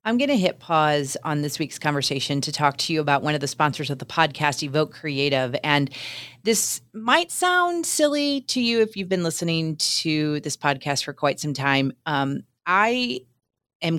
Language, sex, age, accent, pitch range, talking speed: English, female, 30-49, American, 150-210 Hz, 190 wpm